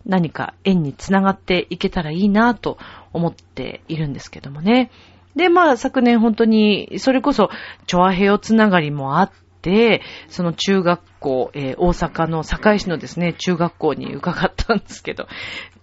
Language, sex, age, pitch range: Japanese, female, 40-59, 150-225 Hz